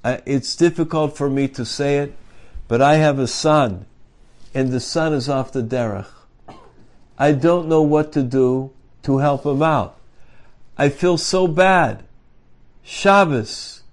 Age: 60-79